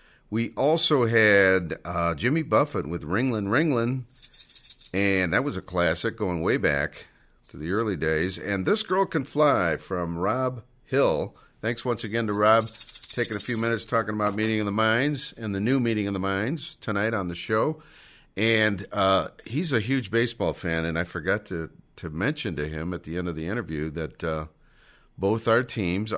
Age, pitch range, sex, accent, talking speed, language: 50-69, 100-145 Hz, male, American, 185 wpm, English